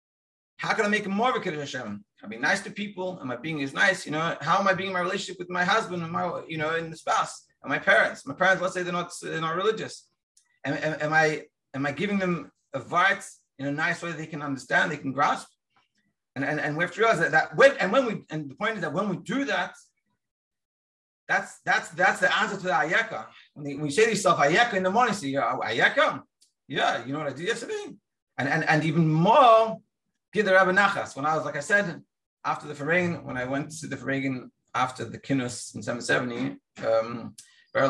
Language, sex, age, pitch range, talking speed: English, male, 30-49, 140-195 Hz, 240 wpm